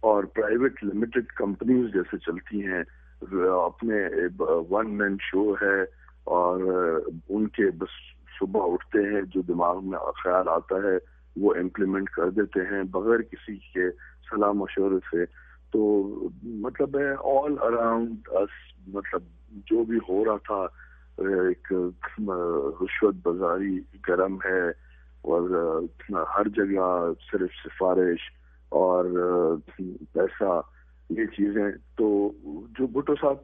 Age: 50-69